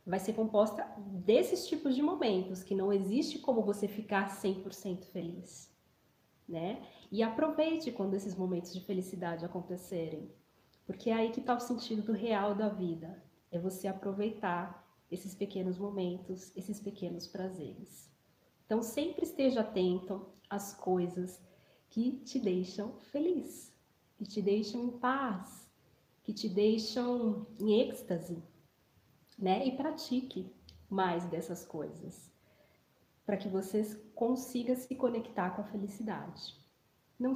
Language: Portuguese